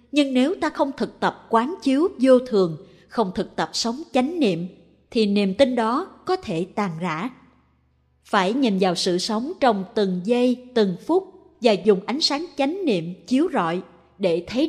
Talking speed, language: 180 wpm, Vietnamese